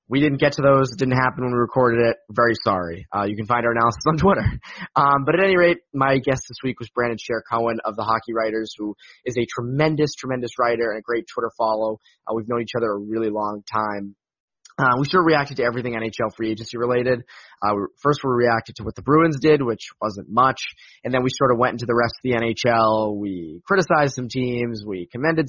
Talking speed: 240 wpm